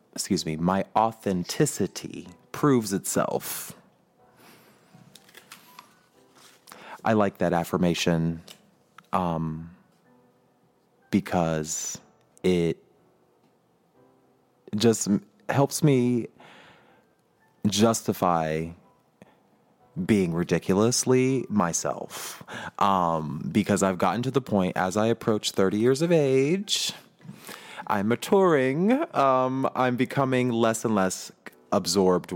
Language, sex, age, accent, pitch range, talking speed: English, male, 30-49, American, 90-125 Hz, 80 wpm